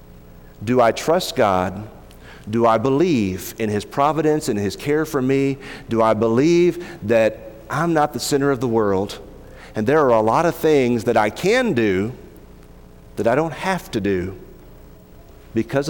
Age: 50-69